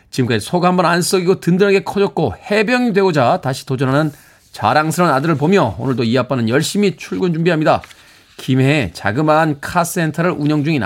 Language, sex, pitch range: Korean, male, 125-160 Hz